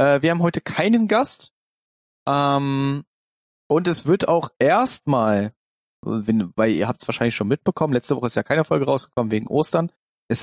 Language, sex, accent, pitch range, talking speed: German, male, German, 120-160 Hz, 160 wpm